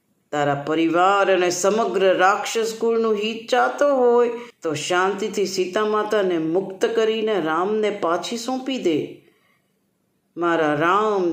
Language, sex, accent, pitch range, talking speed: Gujarati, female, native, 170-235 Hz, 105 wpm